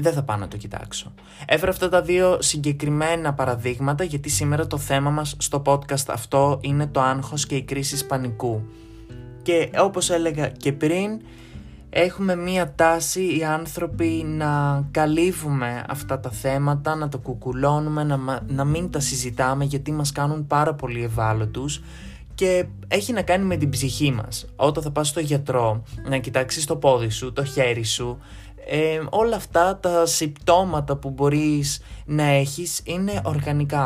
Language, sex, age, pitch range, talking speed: Greek, male, 20-39, 130-160 Hz, 150 wpm